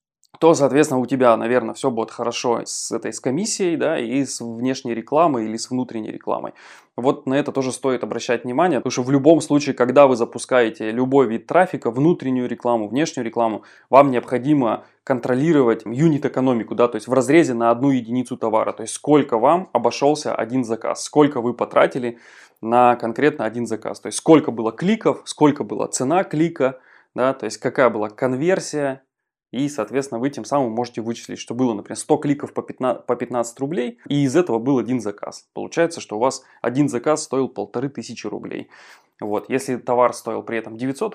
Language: Russian